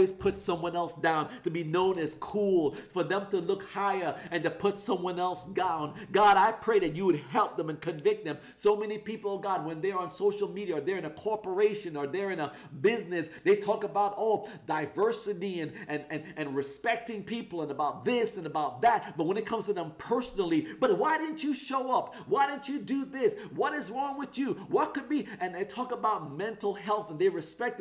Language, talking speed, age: English, 220 wpm, 40-59